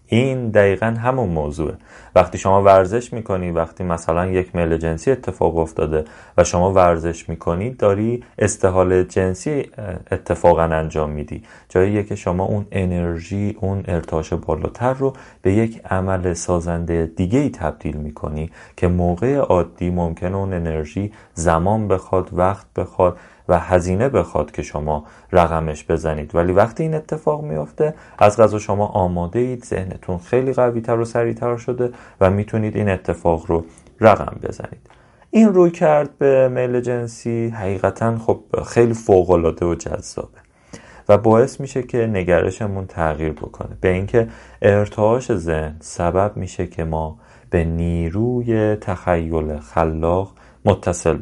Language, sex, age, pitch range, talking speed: Persian, male, 30-49, 85-115 Hz, 135 wpm